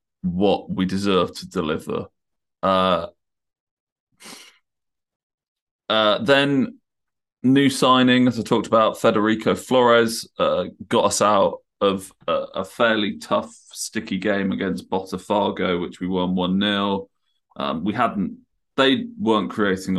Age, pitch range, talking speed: 20-39, 95-120 Hz, 120 wpm